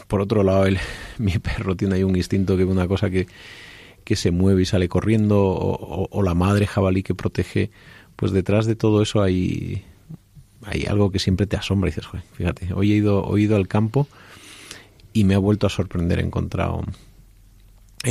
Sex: male